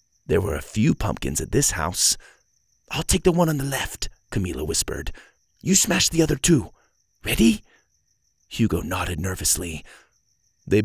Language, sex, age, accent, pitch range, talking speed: English, male, 30-49, American, 110-185 Hz, 150 wpm